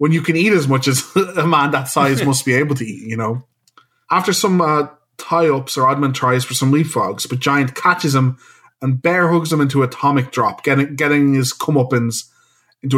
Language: English